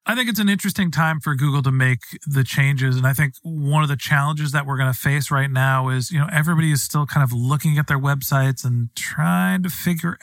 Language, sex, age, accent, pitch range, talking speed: English, male, 40-59, American, 130-165 Hz, 245 wpm